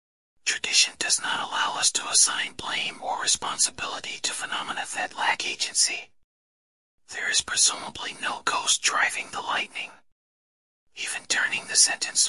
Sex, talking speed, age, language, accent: male, 130 wpm, 40-59, English, American